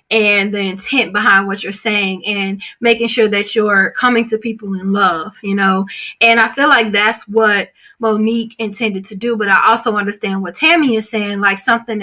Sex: female